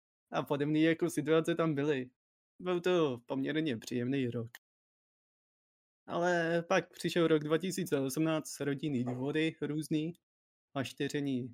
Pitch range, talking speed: 125-160 Hz, 110 wpm